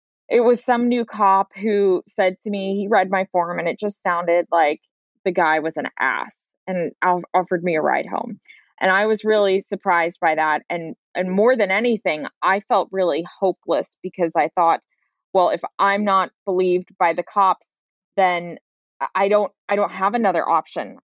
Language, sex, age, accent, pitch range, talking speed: English, female, 20-39, American, 170-200 Hz, 185 wpm